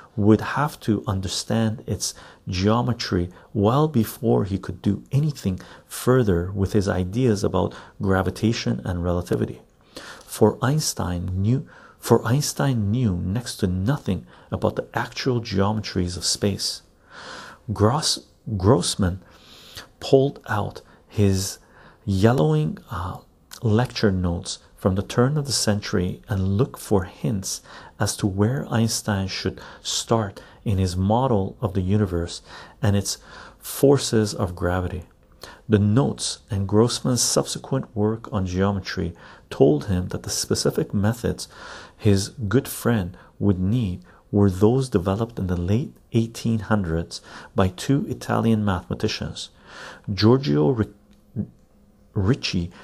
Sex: male